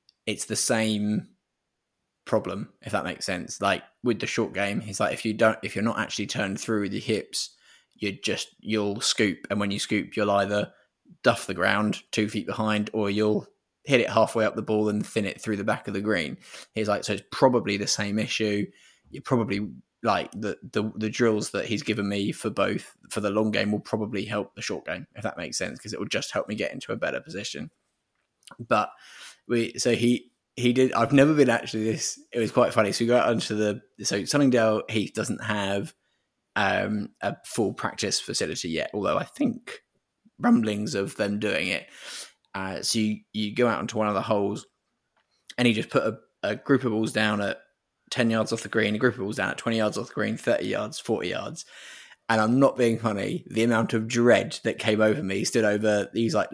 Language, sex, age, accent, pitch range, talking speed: English, male, 20-39, British, 105-115 Hz, 220 wpm